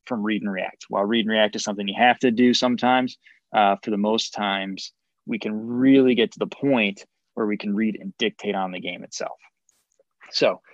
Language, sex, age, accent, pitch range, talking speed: English, male, 20-39, American, 100-125 Hz, 210 wpm